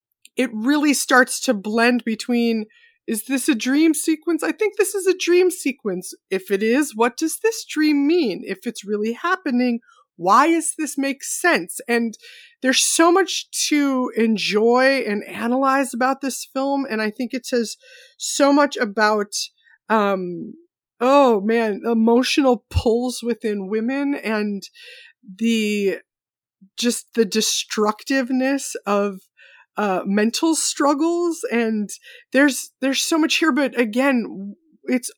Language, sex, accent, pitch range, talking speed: English, female, American, 225-295 Hz, 135 wpm